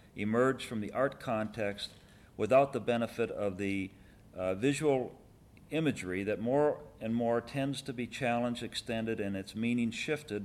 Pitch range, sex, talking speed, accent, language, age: 105-135 Hz, male, 150 wpm, American, English, 50-69